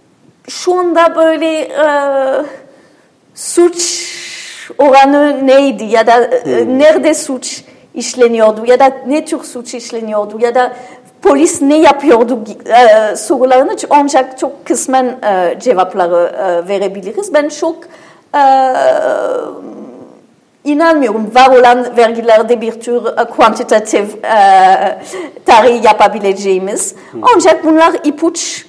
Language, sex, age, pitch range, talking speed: Turkish, female, 40-59, 215-290 Hz, 105 wpm